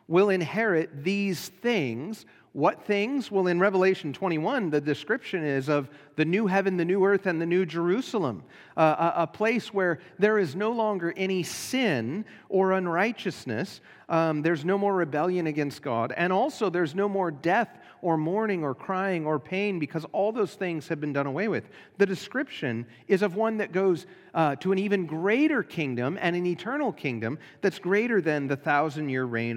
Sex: male